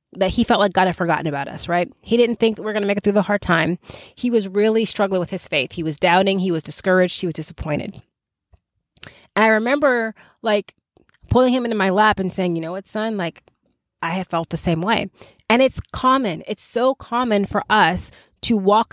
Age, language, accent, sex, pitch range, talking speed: 20-39, English, American, female, 180-235 Hz, 220 wpm